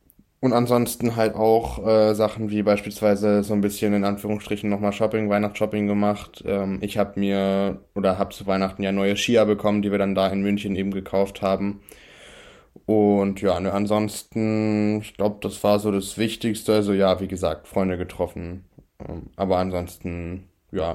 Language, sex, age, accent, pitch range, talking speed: German, male, 10-29, German, 100-110 Hz, 165 wpm